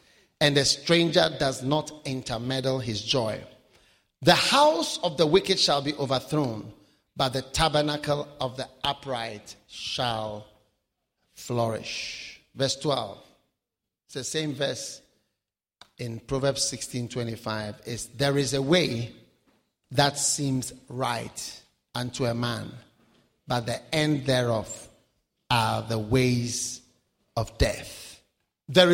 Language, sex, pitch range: English, male, 120-150 Hz